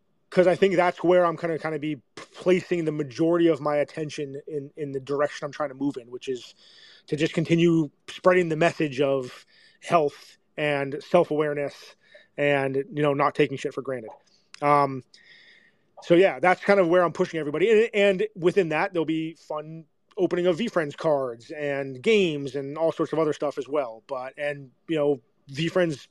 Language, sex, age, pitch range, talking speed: English, male, 30-49, 145-190 Hz, 195 wpm